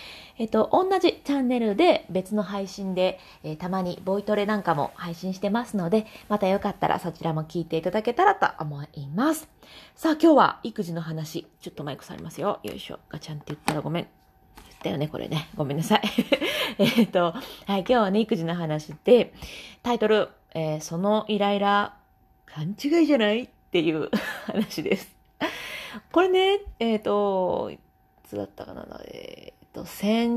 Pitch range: 170-240 Hz